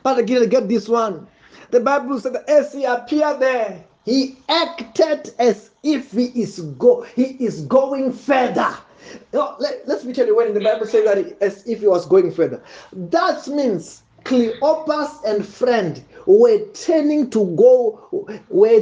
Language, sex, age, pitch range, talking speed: English, male, 30-49, 215-295 Hz, 165 wpm